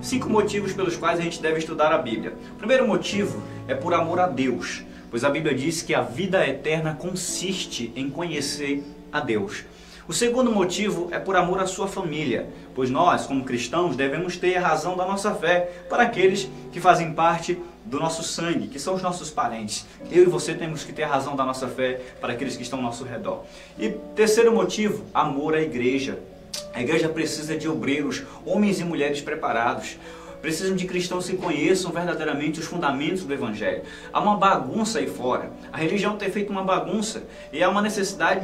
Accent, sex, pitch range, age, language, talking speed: Brazilian, male, 145-195 Hz, 20-39, Portuguese, 190 wpm